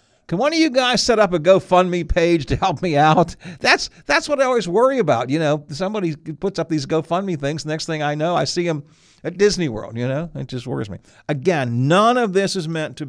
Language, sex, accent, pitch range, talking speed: English, male, American, 115-155 Hz, 240 wpm